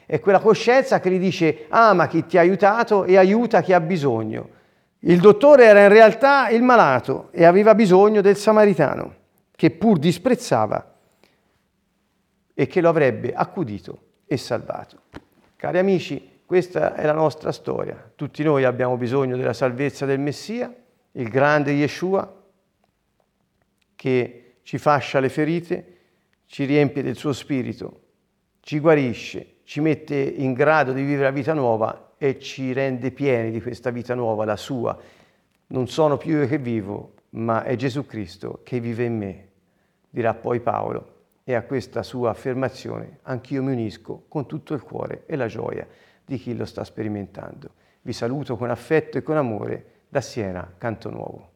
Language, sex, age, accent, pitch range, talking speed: Italian, male, 50-69, native, 120-180 Hz, 155 wpm